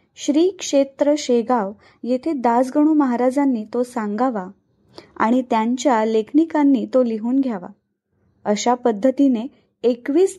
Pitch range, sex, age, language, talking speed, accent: 225-280 Hz, female, 20-39, Marathi, 100 wpm, native